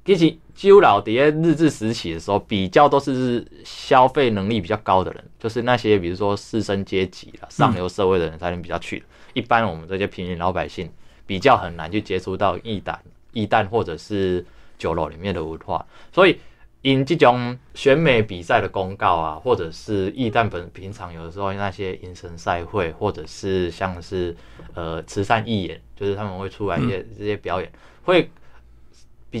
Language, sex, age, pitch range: Chinese, male, 20-39, 85-115 Hz